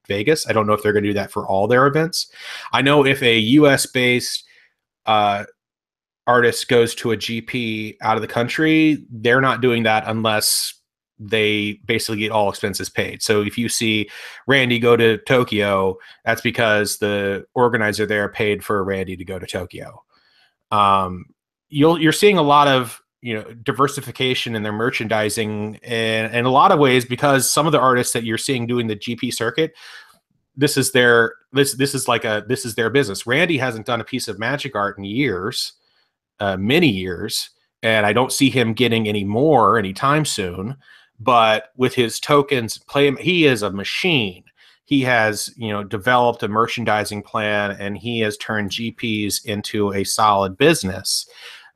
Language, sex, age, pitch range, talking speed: English, male, 30-49, 105-130 Hz, 175 wpm